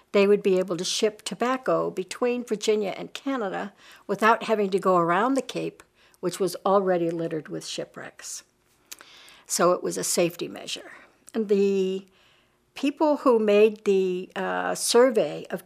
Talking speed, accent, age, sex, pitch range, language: 150 wpm, American, 60-79, female, 175-215 Hz, English